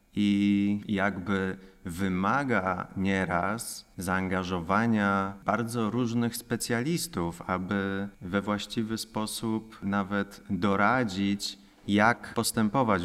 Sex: male